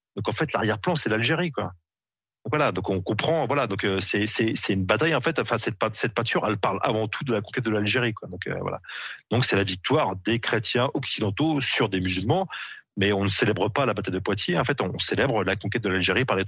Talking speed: 245 wpm